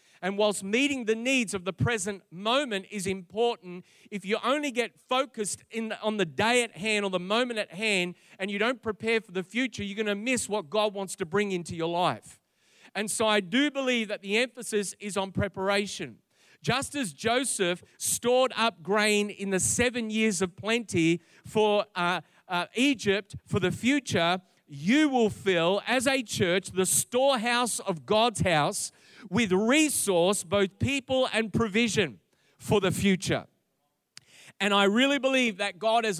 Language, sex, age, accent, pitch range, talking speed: English, male, 40-59, Australian, 185-235 Hz, 170 wpm